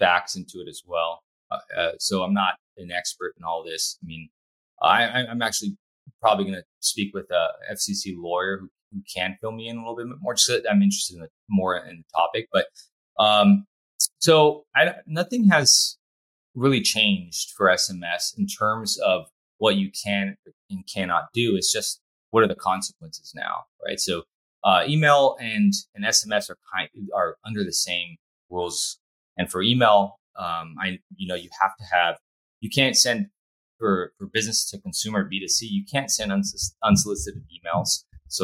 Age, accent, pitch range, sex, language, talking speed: 20-39, American, 90-135 Hz, male, English, 185 wpm